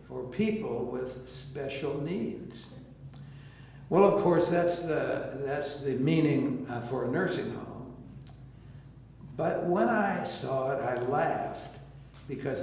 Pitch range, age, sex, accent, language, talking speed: 135-165 Hz, 60-79, male, American, English, 115 wpm